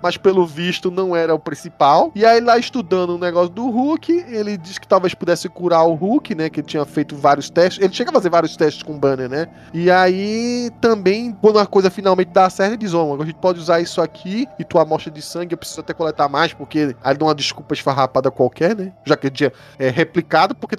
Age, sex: 20-39, male